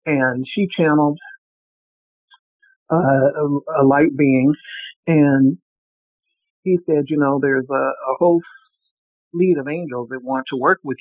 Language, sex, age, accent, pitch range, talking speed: English, male, 60-79, American, 130-155 Hz, 135 wpm